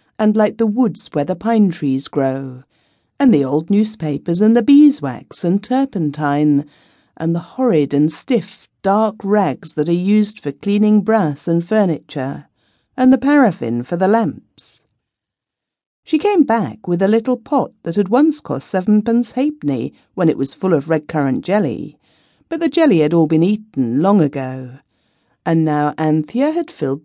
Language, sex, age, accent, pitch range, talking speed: English, female, 50-69, British, 150-255 Hz, 165 wpm